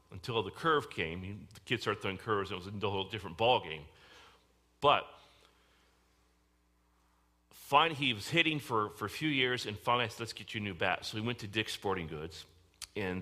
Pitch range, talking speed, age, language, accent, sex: 90-120 Hz, 205 wpm, 40-59, English, American, male